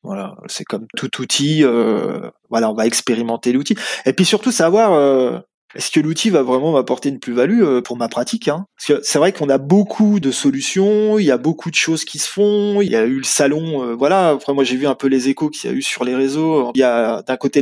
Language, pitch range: French, 130-170 Hz